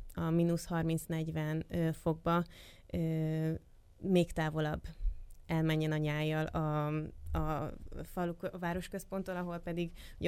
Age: 20-39